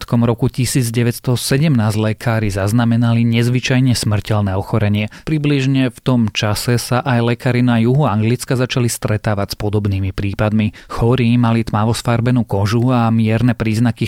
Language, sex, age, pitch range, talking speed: Slovak, male, 30-49, 105-125 Hz, 125 wpm